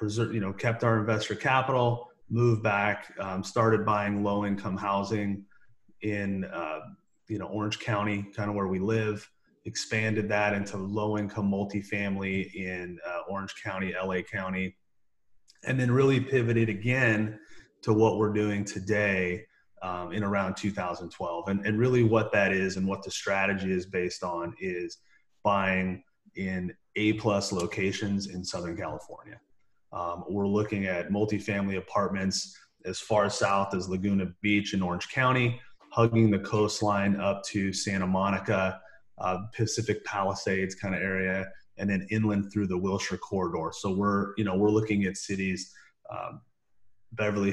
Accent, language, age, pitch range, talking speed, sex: American, English, 30-49, 95-105 Hz, 145 wpm, male